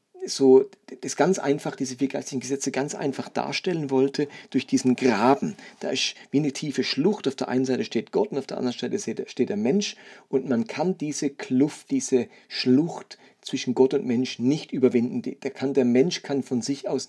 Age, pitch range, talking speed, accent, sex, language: 40-59, 130-195 Hz, 190 wpm, German, male, German